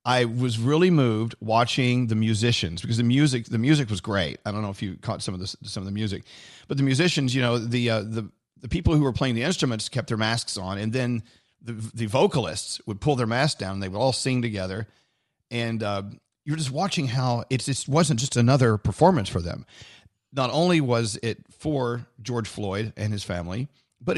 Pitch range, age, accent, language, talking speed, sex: 105-140 Hz, 40-59, American, English, 215 wpm, male